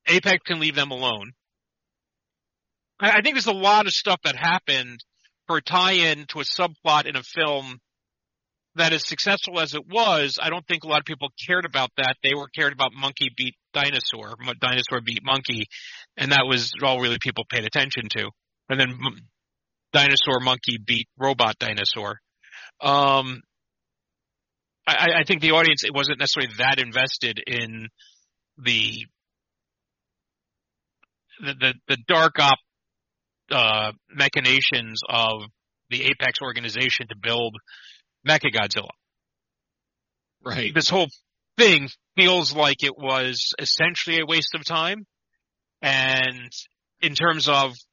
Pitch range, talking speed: 125-160 Hz, 135 wpm